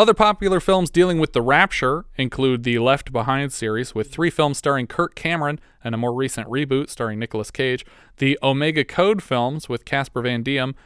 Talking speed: 190 wpm